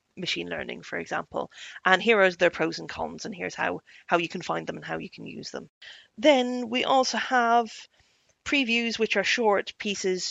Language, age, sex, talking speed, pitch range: English, 30-49, female, 200 wpm, 185-245 Hz